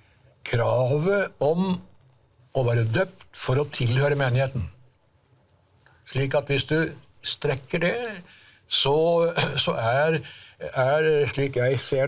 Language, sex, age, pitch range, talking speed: English, male, 60-79, 120-155 Hz, 110 wpm